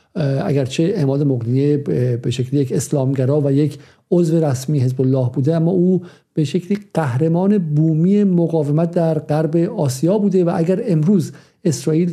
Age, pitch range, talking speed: 50-69, 140-170 Hz, 145 wpm